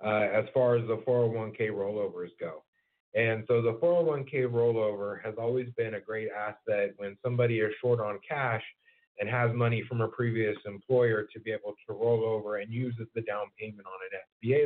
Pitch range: 105-125 Hz